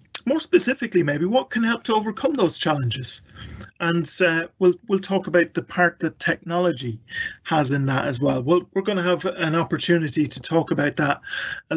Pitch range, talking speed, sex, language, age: 150-190 Hz, 190 wpm, male, English, 40-59